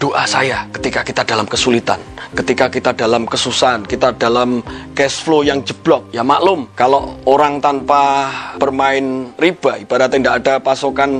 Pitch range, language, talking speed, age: 125-145 Hz, Indonesian, 145 wpm, 30-49